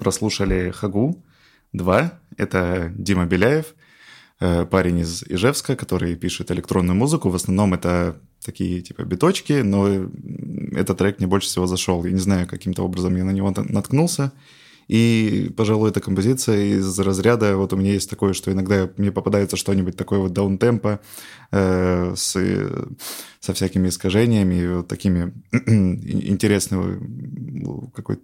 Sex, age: male, 20-39